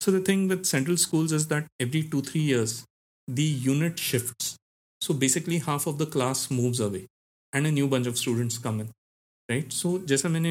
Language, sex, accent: Hindi, male, native